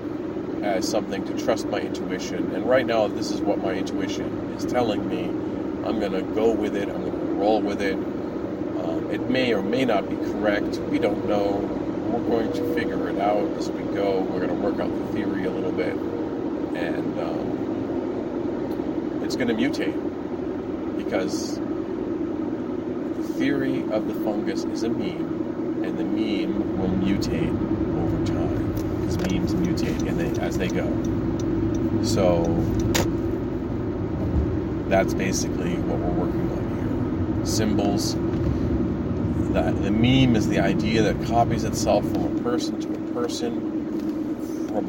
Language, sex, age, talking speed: English, male, 40-59, 145 wpm